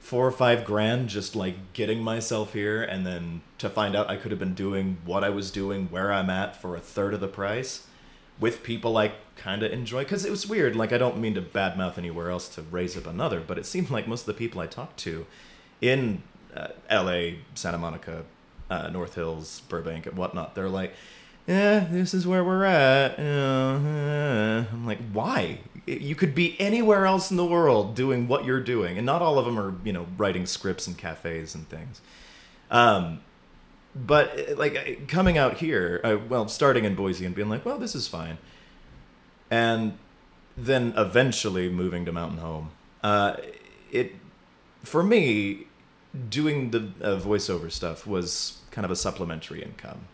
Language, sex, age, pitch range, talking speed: English, male, 30-49, 90-125 Hz, 185 wpm